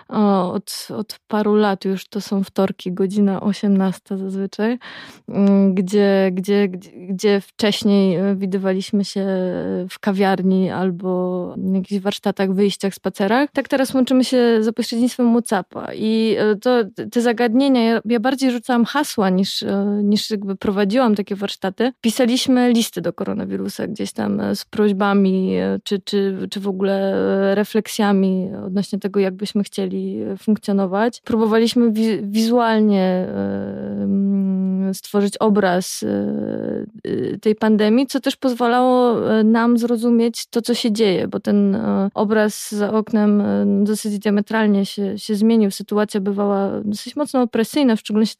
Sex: female